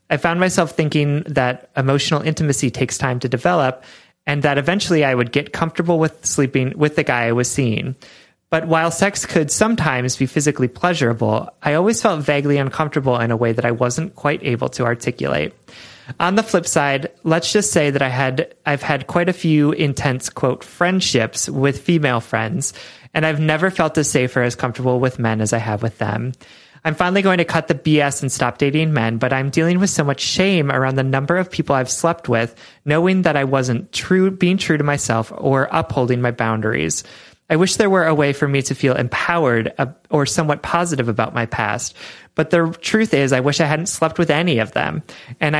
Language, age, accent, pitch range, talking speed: English, 30-49, American, 125-165 Hz, 205 wpm